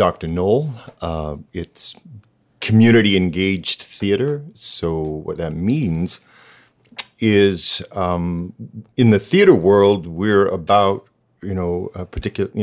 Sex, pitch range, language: male, 90-110 Hz, English